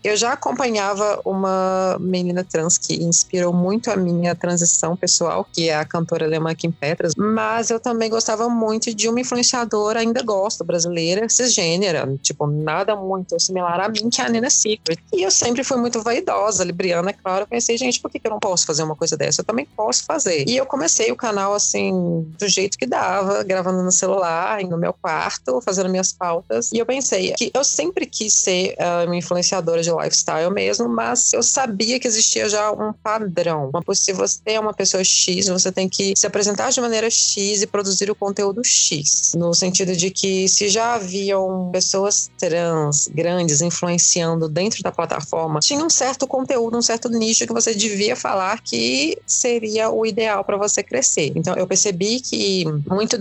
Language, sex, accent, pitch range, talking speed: Portuguese, female, Brazilian, 175-225 Hz, 185 wpm